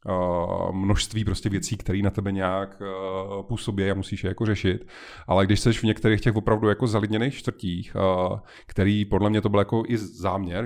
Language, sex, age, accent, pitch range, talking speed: Czech, male, 30-49, native, 105-125 Hz, 175 wpm